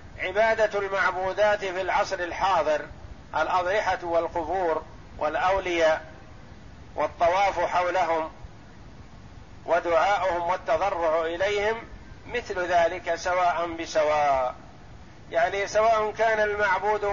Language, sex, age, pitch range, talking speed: Arabic, male, 50-69, 150-205 Hz, 75 wpm